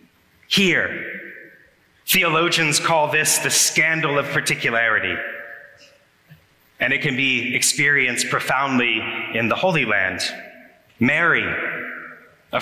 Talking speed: 95 wpm